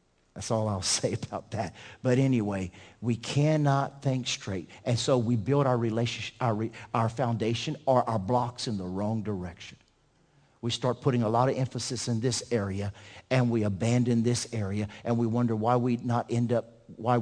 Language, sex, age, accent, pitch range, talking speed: English, male, 50-69, American, 110-135 Hz, 180 wpm